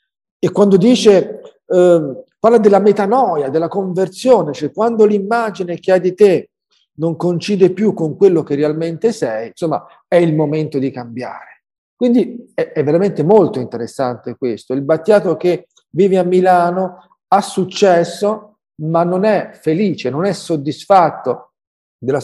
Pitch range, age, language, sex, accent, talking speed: 155-205 Hz, 50-69, Italian, male, native, 145 wpm